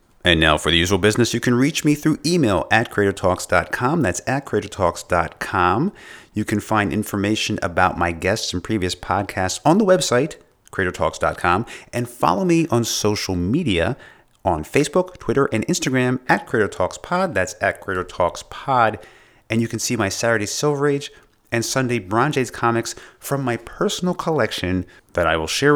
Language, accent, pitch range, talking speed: English, American, 100-135 Hz, 155 wpm